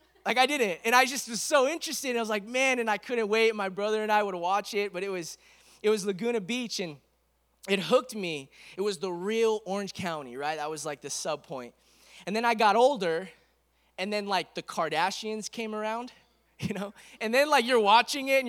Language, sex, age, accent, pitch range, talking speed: English, male, 20-39, American, 180-240 Hz, 225 wpm